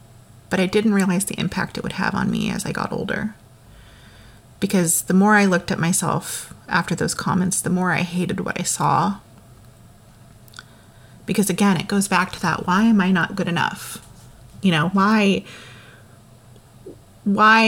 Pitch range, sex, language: 120-195 Hz, female, English